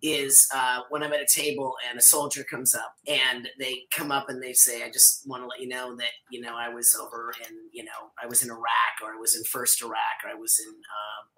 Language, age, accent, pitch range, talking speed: English, 30-49, American, 125-210 Hz, 265 wpm